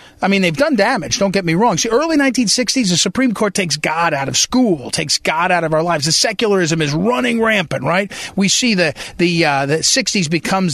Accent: American